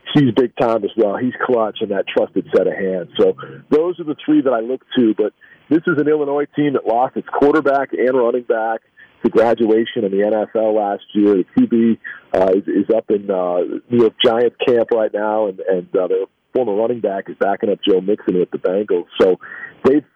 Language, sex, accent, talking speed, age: English, male, American, 210 wpm, 40-59